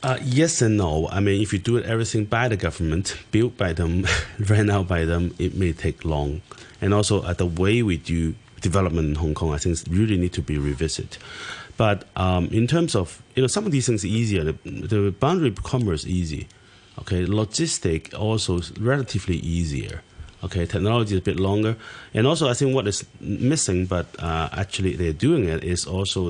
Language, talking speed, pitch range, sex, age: English, 200 wpm, 85-115 Hz, male, 30-49